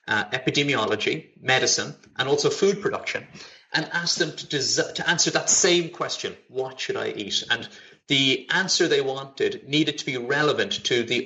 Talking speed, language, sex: 170 wpm, English, male